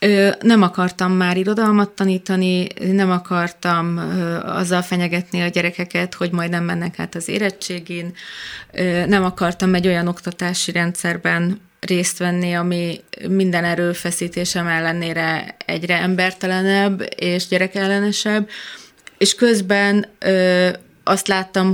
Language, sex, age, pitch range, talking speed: Hungarian, female, 30-49, 175-190 Hz, 105 wpm